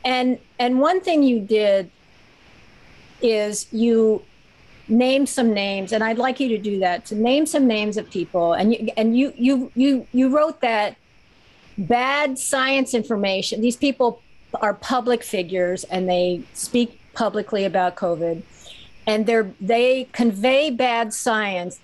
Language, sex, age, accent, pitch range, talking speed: English, female, 50-69, American, 185-245 Hz, 145 wpm